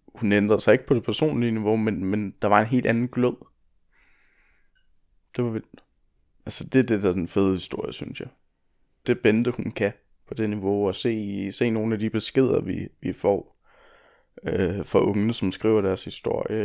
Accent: native